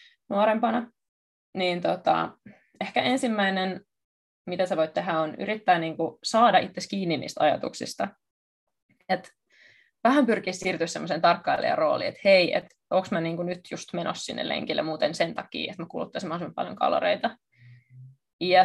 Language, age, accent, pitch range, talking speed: Finnish, 20-39, native, 165-210 Hz, 145 wpm